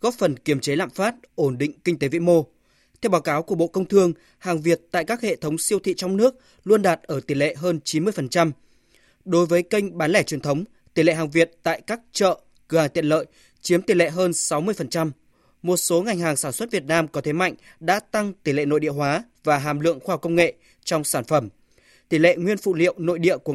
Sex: male